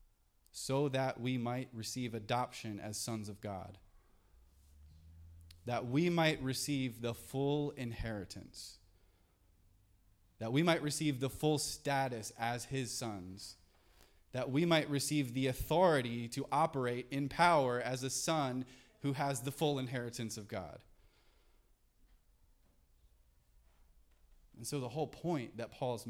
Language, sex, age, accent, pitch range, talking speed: English, male, 20-39, American, 95-135 Hz, 125 wpm